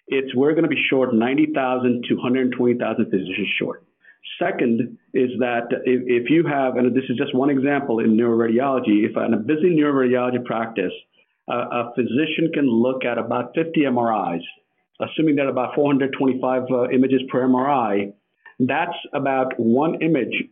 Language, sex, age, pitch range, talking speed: English, male, 50-69, 115-140 Hz, 155 wpm